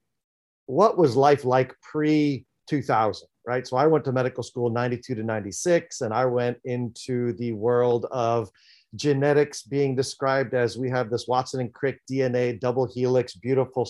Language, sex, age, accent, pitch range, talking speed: English, male, 40-59, American, 115-135 Hz, 155 wpm